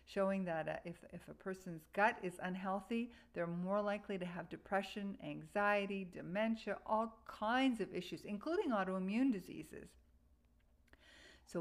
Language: English